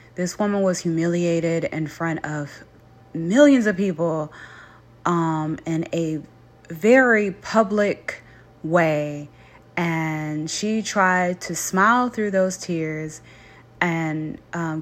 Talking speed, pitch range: 105 wpm, 150-180 Hz